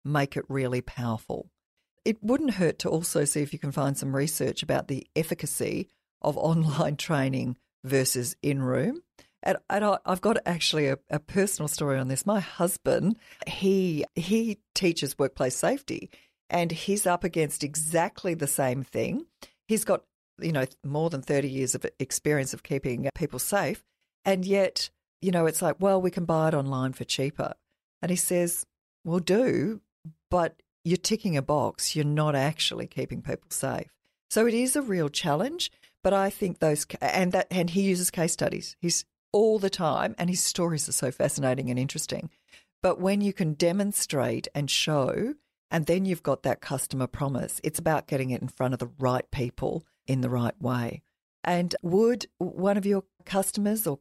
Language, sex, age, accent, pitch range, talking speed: English, female, 50-69, Australian, 140-190 Hz, 175 wpm